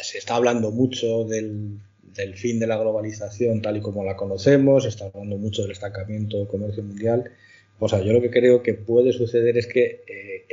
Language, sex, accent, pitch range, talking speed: Spanish, male, Spanish, 100-125 Hz, 205 wpm